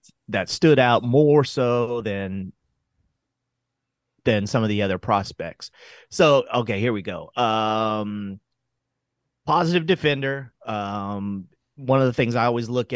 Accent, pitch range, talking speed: American, 105-125 Hz, 130 wpm